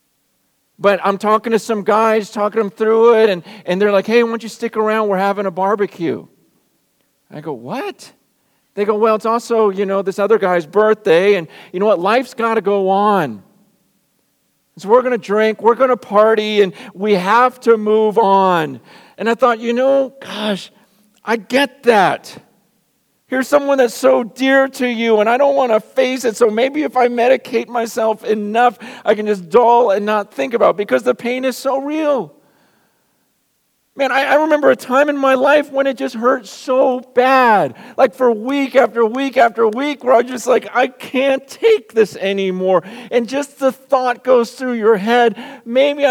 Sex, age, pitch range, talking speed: male, 50-69, 210-255 Hz, 195 wpm